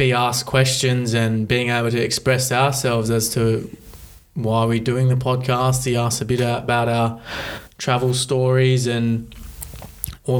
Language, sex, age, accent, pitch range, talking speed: English, male, 20-39, Australian, 115-130 Hz, 150 wpm